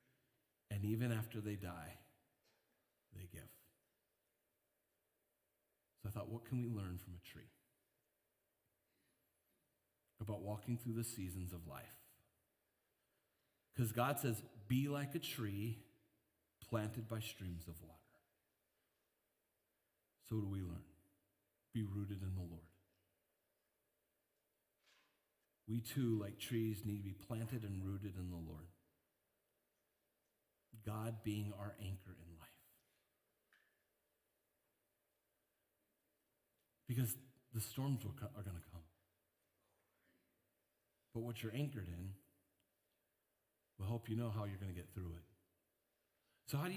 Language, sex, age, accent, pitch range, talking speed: English, male, 40-59, American, 95-120 Hz, 115 wpm